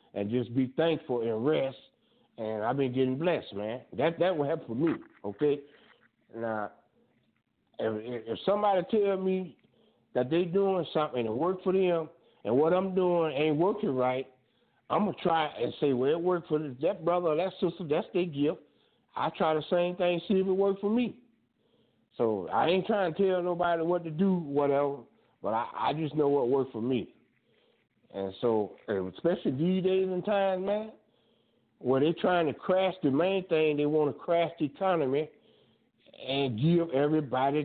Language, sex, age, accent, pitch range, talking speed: English, male, 60-79, American, 140-175 Hz, 180 wpm